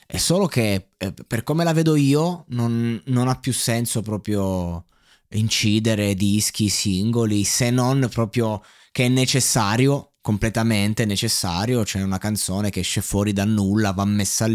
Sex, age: male, 20-39